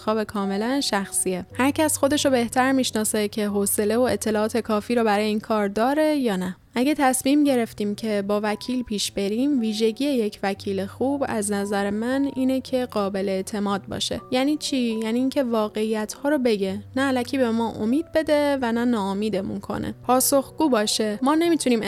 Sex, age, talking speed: female, 10-29, 170 wpm